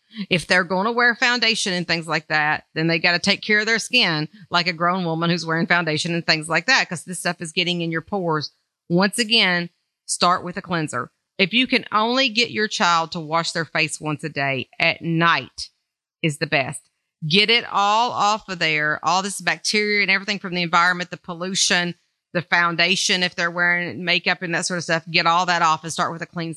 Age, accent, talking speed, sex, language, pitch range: 40-59, American, 225 wpm, female, English, 165-200 Hz